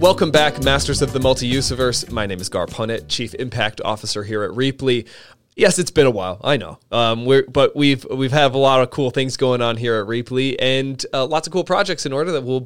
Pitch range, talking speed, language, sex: 115-140 Hz, 240 wpm, English, male